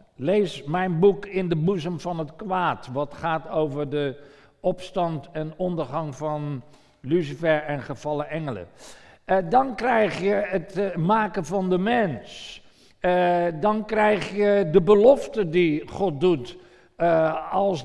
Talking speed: 130 wpm